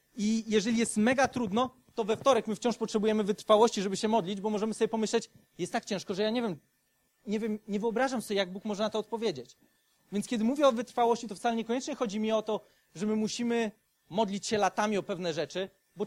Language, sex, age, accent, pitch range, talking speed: Polish, male, 30-49, native, 200-245 Hz, 220 wpm